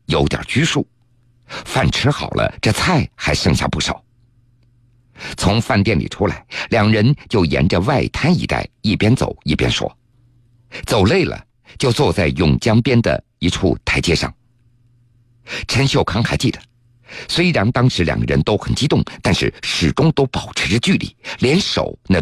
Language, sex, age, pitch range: Chinese, male, 50-69, 100-120 Hz